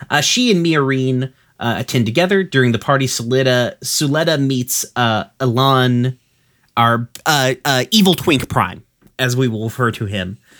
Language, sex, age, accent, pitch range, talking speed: English, male, 30-49, American, 115-145 Hz, 145 wpm